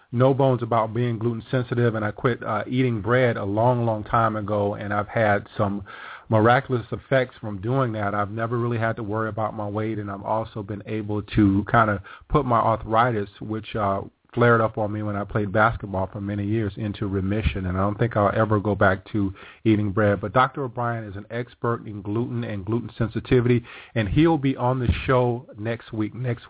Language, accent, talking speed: English, American, 210 wpm